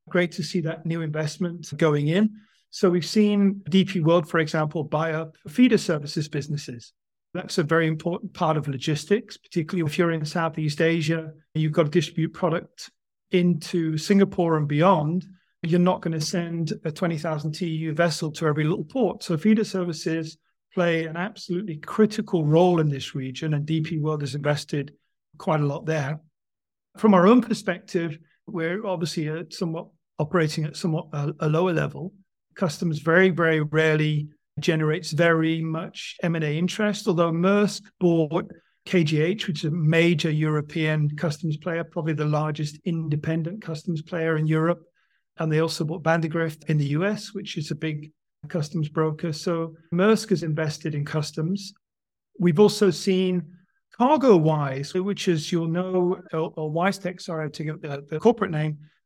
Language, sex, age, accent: English, male, 40-59, British